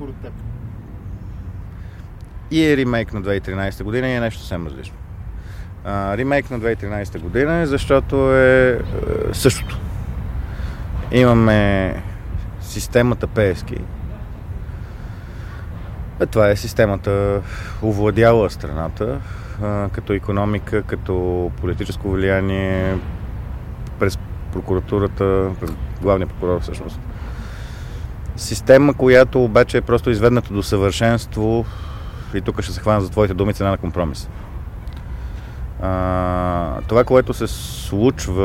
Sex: male